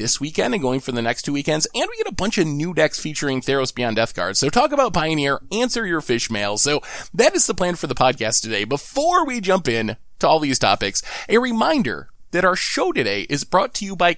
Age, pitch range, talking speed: 20-39, 125-210 Hz, 245 wpm